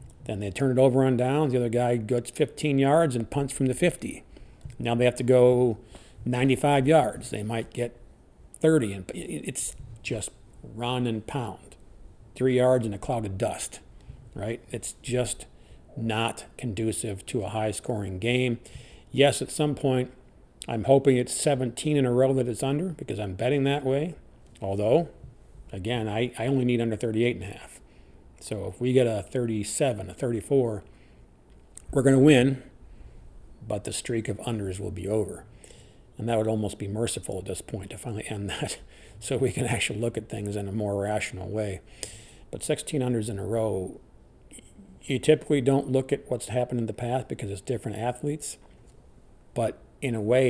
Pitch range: 105-130 Hz